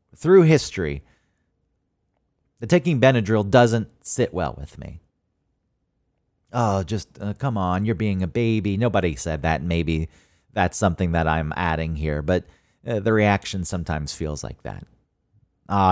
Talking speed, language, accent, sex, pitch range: 145 wpm, English, American, male, 85-110 Hz